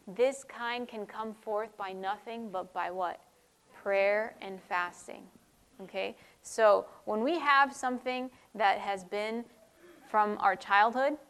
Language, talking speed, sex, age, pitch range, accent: English, 135 wpm, female, 20-39, 200-235 Hz, American